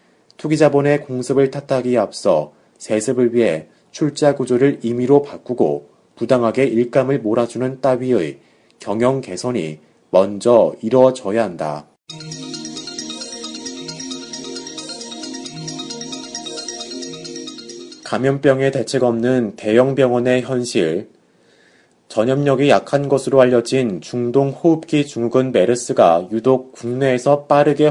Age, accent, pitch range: 30-49, native, 115-135 Hz